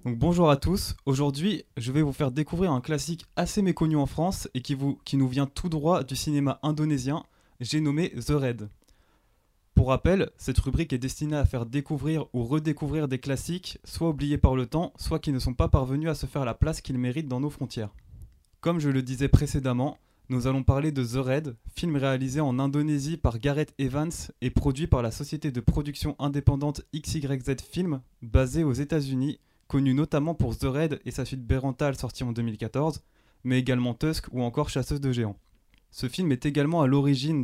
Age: 20-39